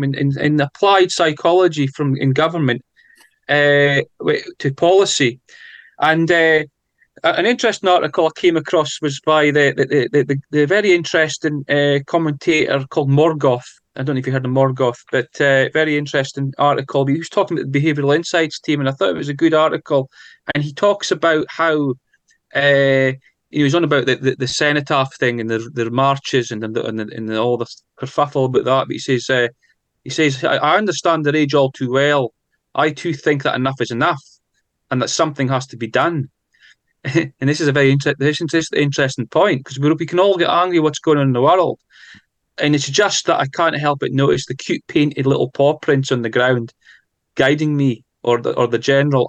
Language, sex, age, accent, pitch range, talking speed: English, male, 30-49, British, 135-155 Hz, 195 wpm